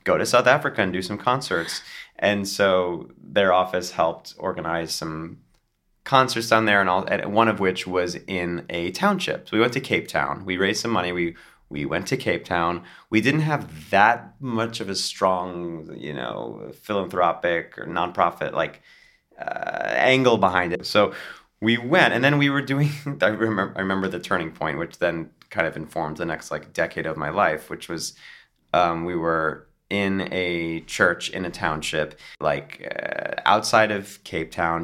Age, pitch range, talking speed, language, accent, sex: 30-49, 85-105 Hz, 185 wpm, English, American, male